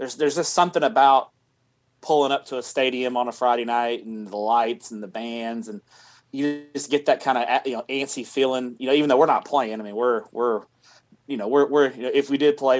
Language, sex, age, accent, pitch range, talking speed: English, male, 30-49, American, 120-140 Hz, 245 wpm